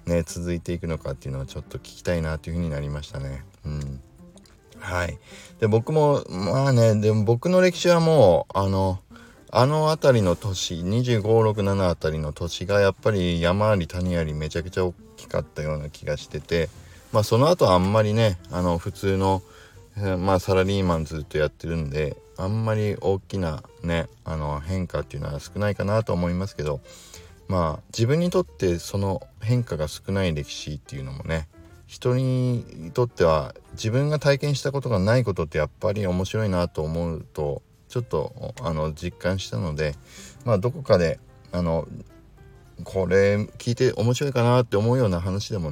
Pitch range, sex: 85-110 Hz, male